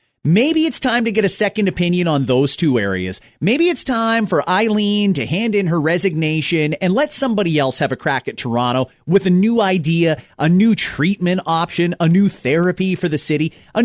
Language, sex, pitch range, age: English, male, 155-225 Hz, 30-49